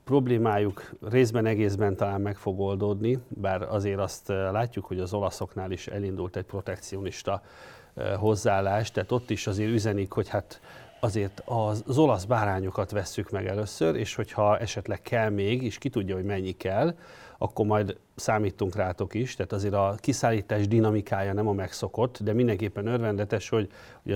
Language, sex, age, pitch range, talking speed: Hungarian, male, 40-59, 95-110 Hz, 155 wpm